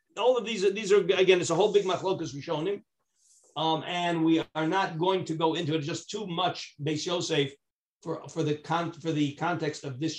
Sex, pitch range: male, 160-200 Hz